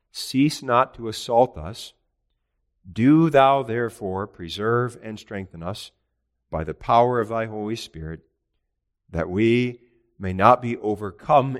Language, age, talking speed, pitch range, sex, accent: English, 50-69, 130 wpm, 85-115 Hz, male, American